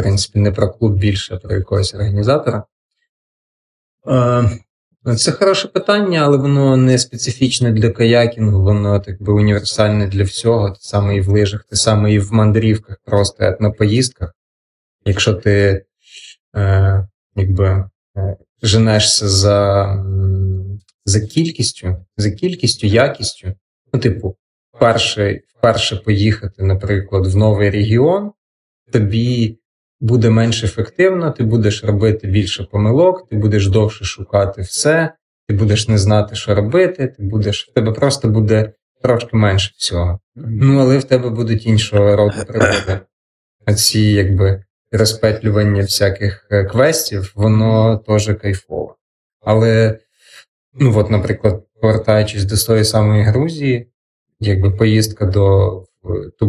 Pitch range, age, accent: 100-115 Hz, 20-39, native